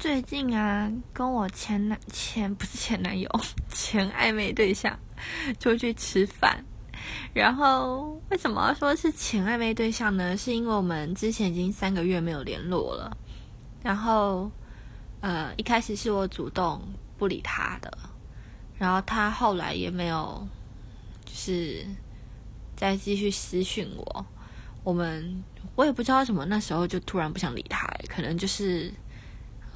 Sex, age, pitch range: female, 20-39, 165-235 Hz